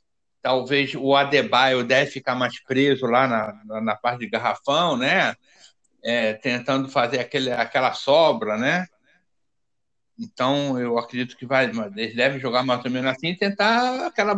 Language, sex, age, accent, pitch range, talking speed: Portuguese, male, 60-79, Brazilian, 130-185 Hz, 155 wpm